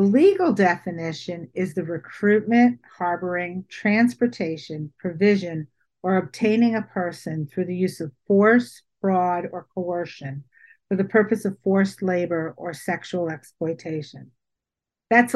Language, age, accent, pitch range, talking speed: English, 50-69, American, 170-210 Hz, 115 wpm